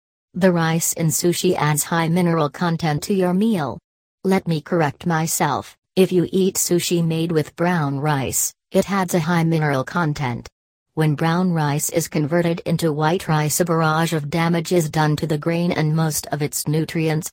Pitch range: 150-175 Hz